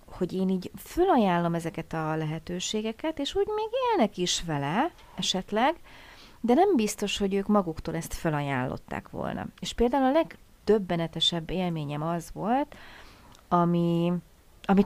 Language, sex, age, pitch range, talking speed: Hungarian, female, 30-49, 155-205 Hz, 130 wpm